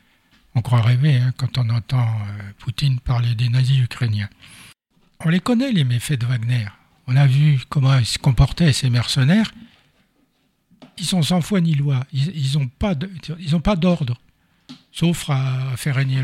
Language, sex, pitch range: French, male, 120-145 Hz